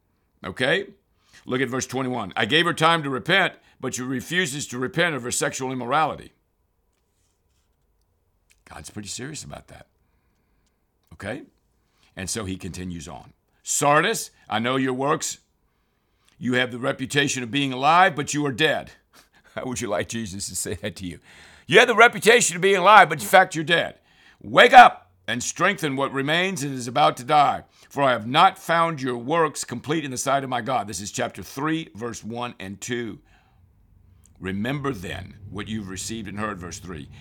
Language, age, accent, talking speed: English, 60-79, American, 180 wpm